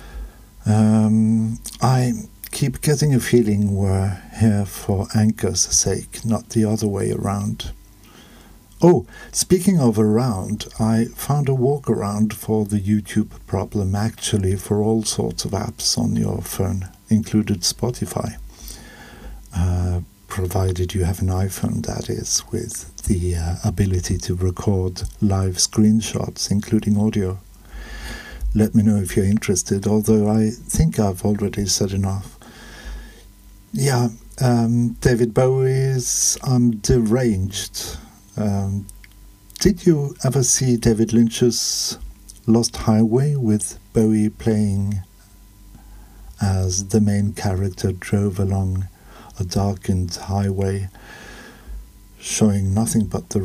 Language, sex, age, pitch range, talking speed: English, male, 60-79, 95-115 Hz, 115 wpm